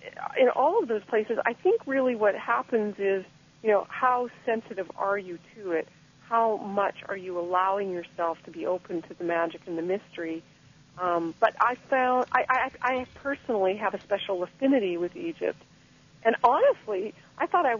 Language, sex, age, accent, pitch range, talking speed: English, female, 40-59, American, 175-230 Hz, 180 wpm